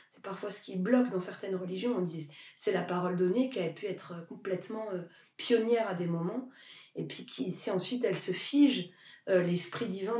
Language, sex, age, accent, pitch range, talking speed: French, female, 20-39, French, 190-250 Hz, 200 wpm